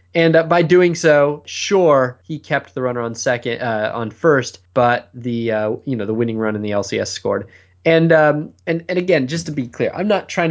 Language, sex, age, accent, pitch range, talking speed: English, male, 20-39, American, 120-165 Hz, 225 wpm